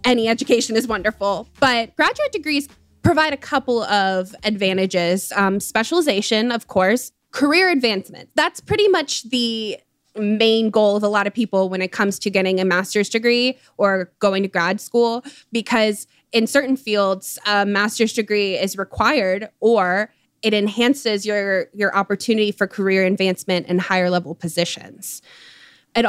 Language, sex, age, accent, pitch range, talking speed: English, female, 20-39, American, 190-240 Hz, 150 wpm